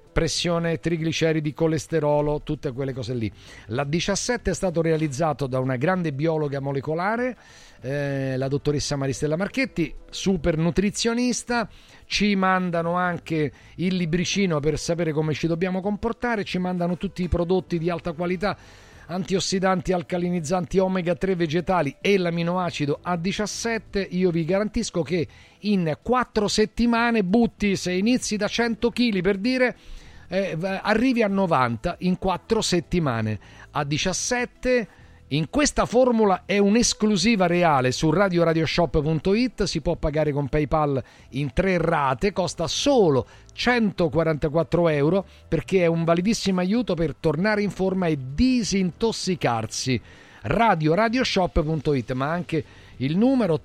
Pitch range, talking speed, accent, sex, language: 155-200 Hz, 125 wpm, native, male, Italian